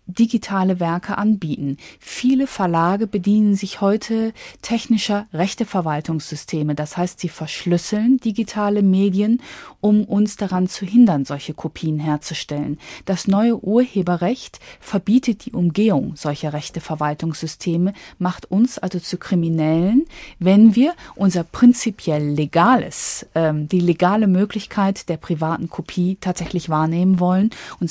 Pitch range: 165-205 Hz